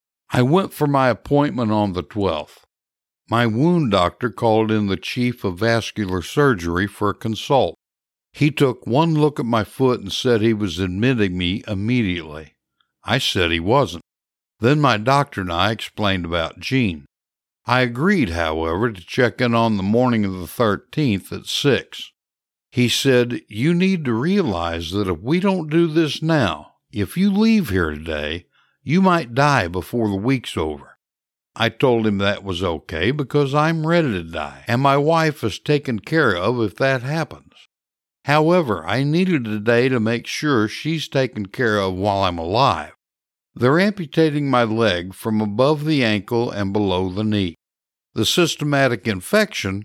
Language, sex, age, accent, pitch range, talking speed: English, male, 60-79, American, 95-140 Hz, 165 wpm